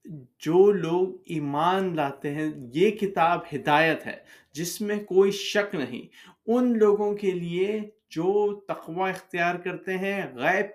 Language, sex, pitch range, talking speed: Urdu, male, 160-200 Hz, 135 wpm